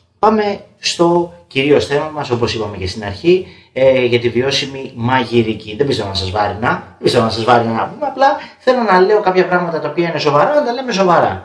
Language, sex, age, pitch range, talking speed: Greek, male, 30-49, 110-180 Hz, 215 wpm